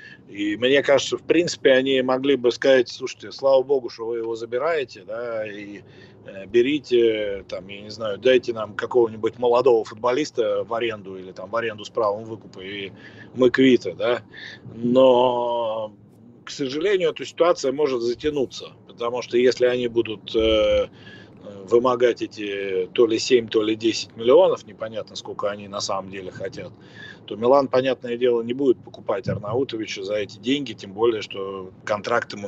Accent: native